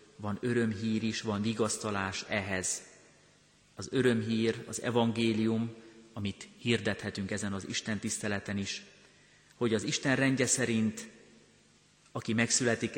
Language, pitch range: Hungarian, 100-115 Hz